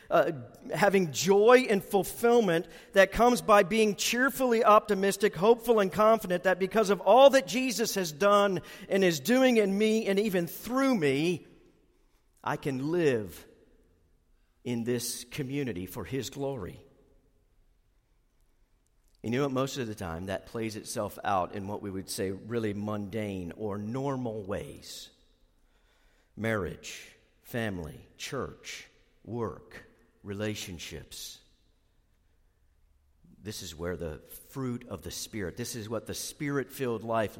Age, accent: 50-69, American